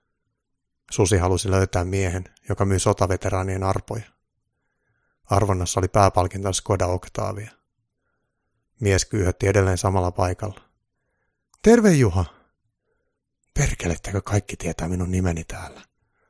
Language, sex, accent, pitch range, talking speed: Finnish, male, native, 95-115 Hz, 95 wpm